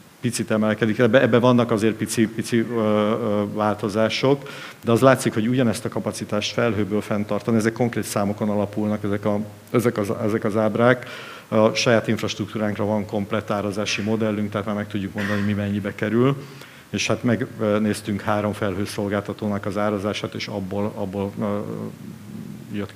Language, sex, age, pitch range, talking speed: Hungarian, male, 50-69, 105-115 Hz, 140 wpm